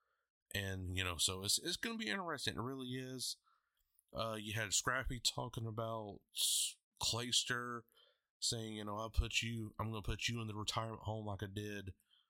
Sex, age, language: male, 20-39, English